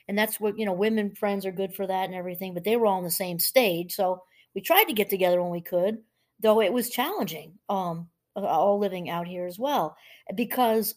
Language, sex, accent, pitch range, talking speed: English, female, American, 180-225 Hz, 230 wpm